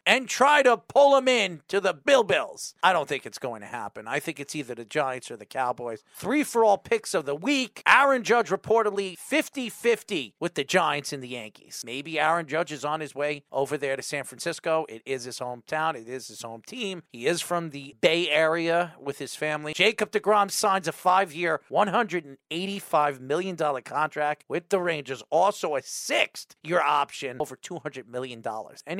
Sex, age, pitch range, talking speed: male, 40-59, 140-195 Hz, 195 wpm